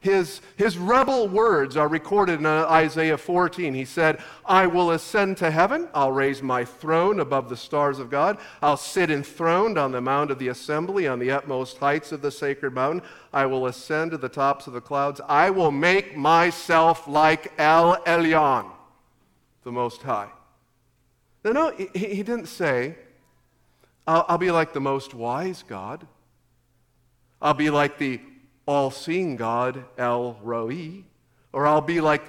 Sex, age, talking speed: male, 50-69, 165 wpm